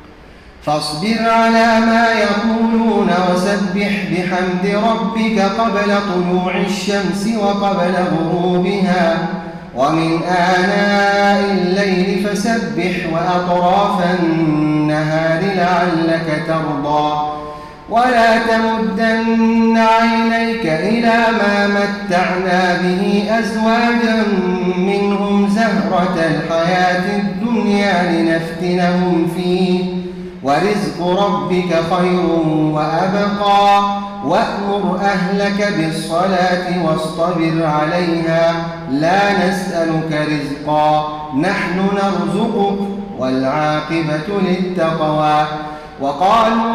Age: 30-49